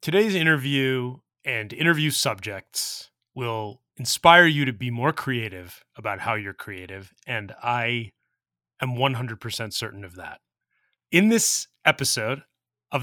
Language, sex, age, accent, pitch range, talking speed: English, male, 30-49, American, 110-140 Hz, 125 wpm